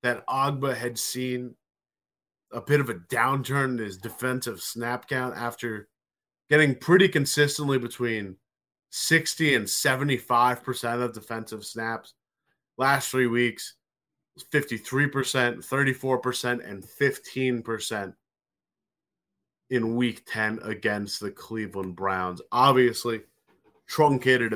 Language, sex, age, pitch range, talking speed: English, male, 20-39, 115-145 Hz, 100 wpm